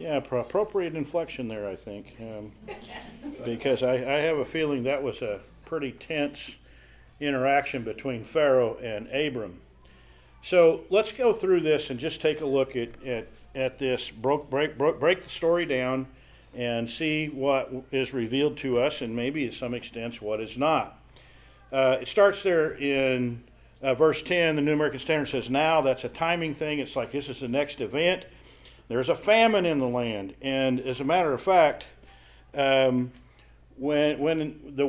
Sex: male